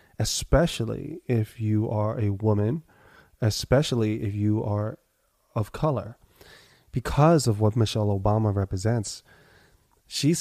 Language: English